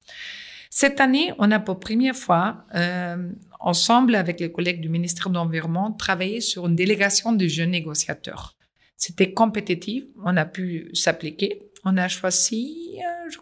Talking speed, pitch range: 150 wpm, 180-220 Hz